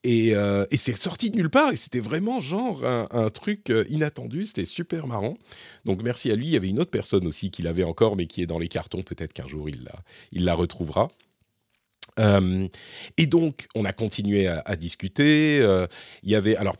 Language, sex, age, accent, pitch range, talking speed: French, male, 40-59, French, 90-125 Hz, 220 wpm